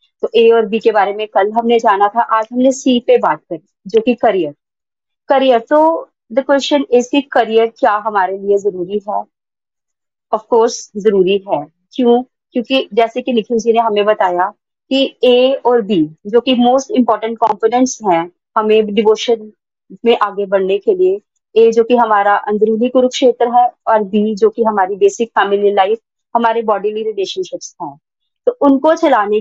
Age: 30-49